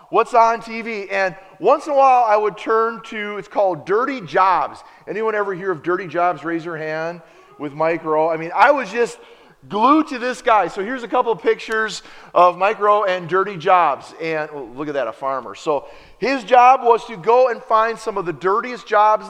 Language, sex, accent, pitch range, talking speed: English, male, American, 155-235 Hz, 215 wpm